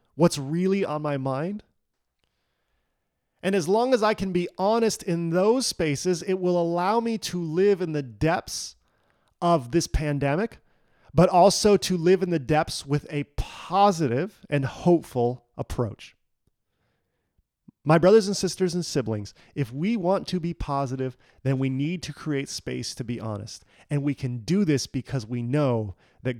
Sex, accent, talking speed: male, American, 160 wpm